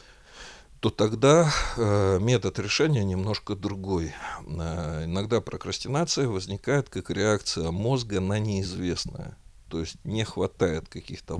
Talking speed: 100 wpm